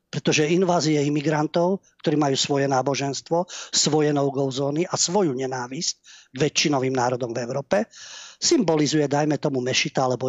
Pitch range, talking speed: 130-170 Hz, 135 wpm